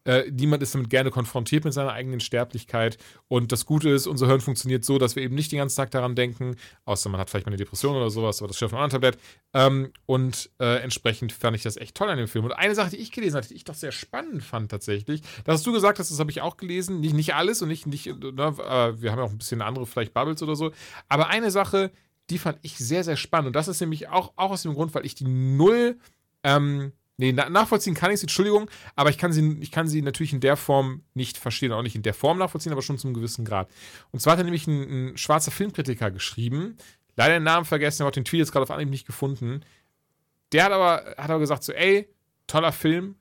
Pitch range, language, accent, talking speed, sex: 125-160 Hz, German, German, 255 wpm, male